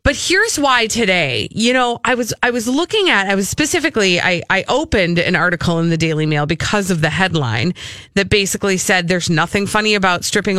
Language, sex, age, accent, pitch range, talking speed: English, female, 30-49, American, 165-225 Hz, 205 wpm